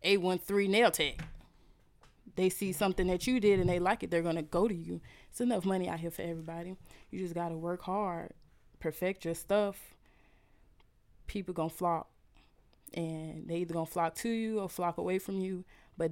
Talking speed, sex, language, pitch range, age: 180 wpm, female, English, 170-195 Hz, 20-39